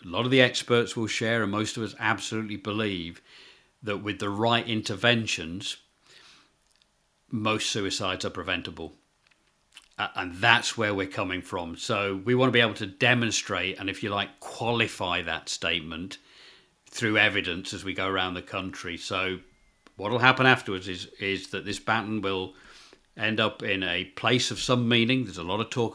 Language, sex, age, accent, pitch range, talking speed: English, male, 50-69, British, 95-110 Hz, 175 wpm